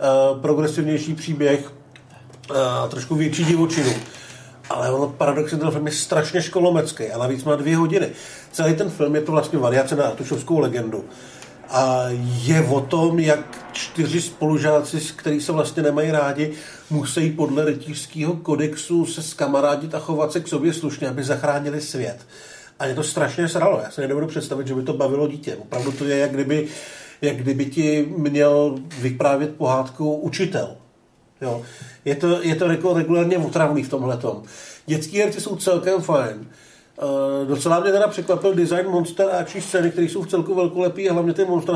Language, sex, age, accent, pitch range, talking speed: Czech, male, 50-69, native, 140-170 Hz, 170 wpm